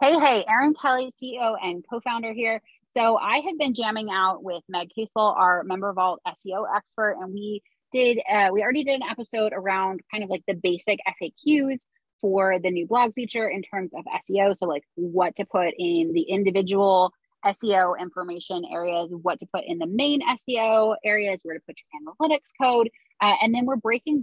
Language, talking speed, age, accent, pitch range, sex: English, 190 wpm, 20-39, American, 180-230 Hz, female